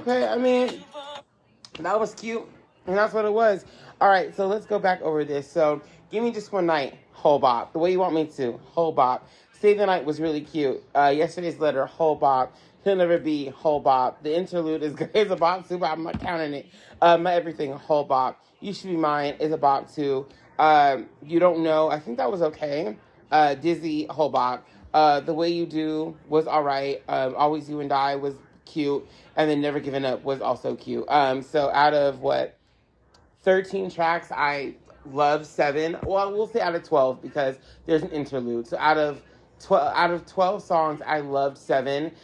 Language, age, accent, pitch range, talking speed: English, 30-49, American, 140-175 Hz, 195 wpm